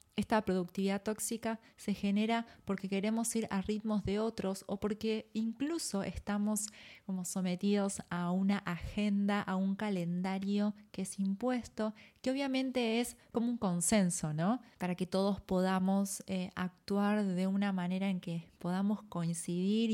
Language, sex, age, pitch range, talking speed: Spanish, female, 20-39, 190-220 Hz, 140 wpm